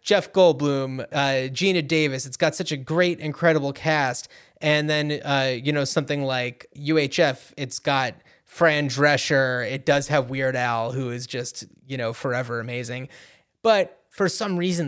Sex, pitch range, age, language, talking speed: male, 135-160 Hz, 20-39, English, 160 wpm